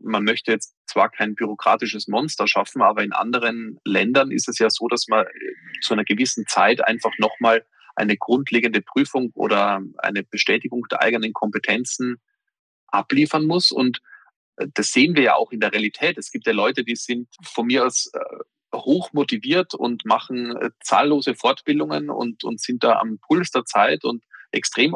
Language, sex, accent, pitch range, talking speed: German, male, German, 110-145 Hz, 165 wpm